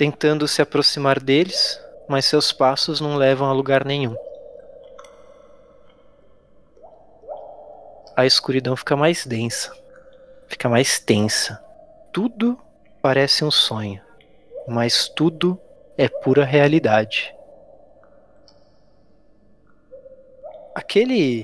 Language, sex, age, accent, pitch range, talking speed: Portuguese, male, 20-39, Brazilian, 135-195 Hz, 85 wpm